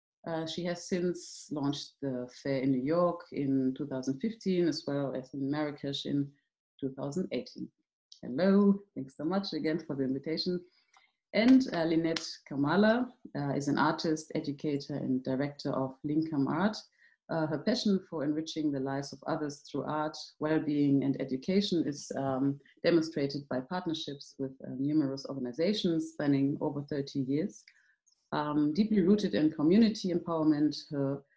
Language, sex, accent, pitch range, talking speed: English, female, German, 140-175 Hz, 145 wpm